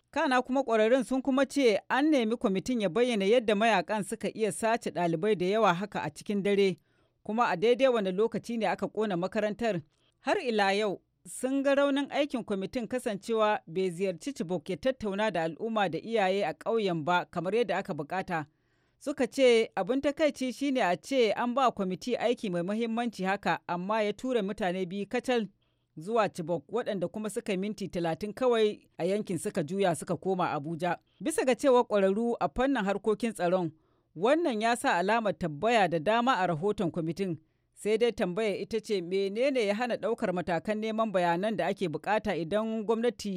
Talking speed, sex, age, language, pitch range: 155 wpm, female, 40-59, English, 180-235 Hz